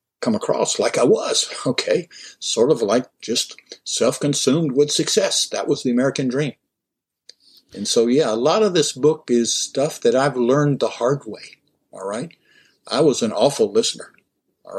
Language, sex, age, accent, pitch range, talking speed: English, male, 60-79, American, 115-155 Hz, 170 wpm